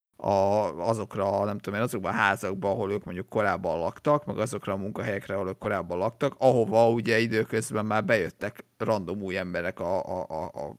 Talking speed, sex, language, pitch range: 165 wpm, male, Hungarian, 100-120 Hz